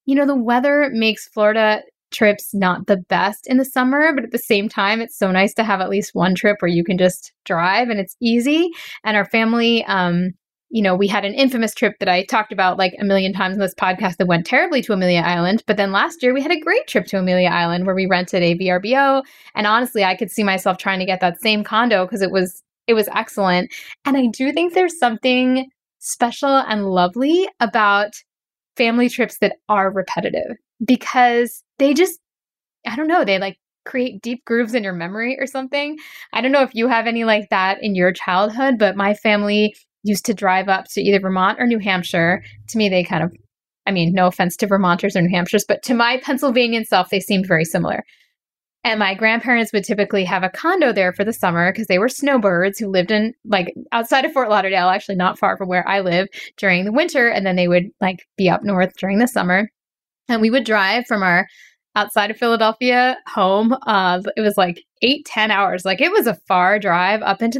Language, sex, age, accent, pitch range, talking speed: English, female, 10-29, American, 190-245 Hz, 220 wpm